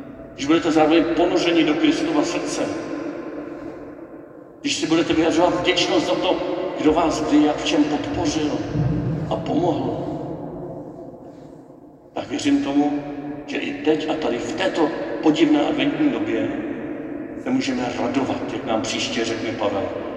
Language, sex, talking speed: Czech, male, 130 wpm